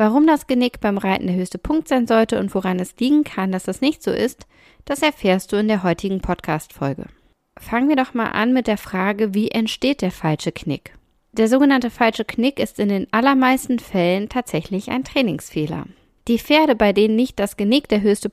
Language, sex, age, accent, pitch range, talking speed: German, female, 10-29, German, 185-230 Hz, 200 wpm